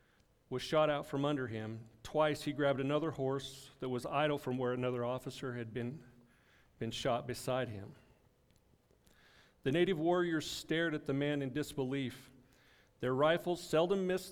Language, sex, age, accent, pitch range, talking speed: English, male, 40-59, American, 130-155 Hz, 155 wpm